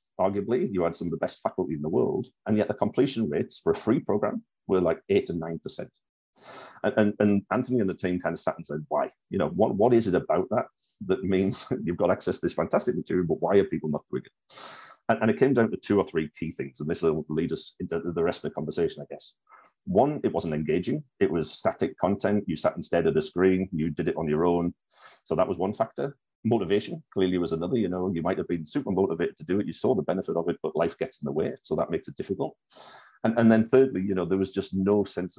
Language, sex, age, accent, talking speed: English, male, 40-59, British, 260 wpm